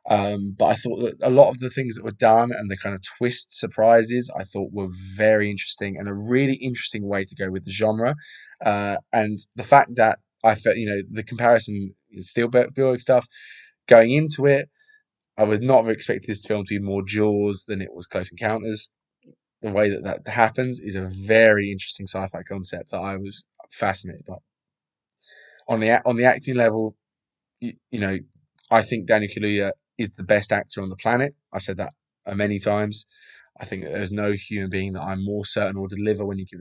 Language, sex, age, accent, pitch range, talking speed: English, male, 20-39, British, 95-115 Hz, 205 wpm